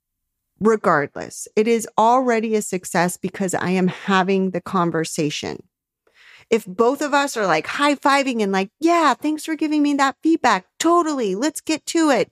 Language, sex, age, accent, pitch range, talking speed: English, female, 30-49, American, 180-270 Hz, 160 wpm